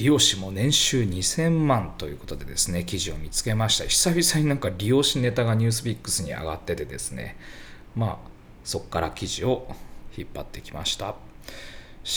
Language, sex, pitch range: Japanese, male, 90-145 Hz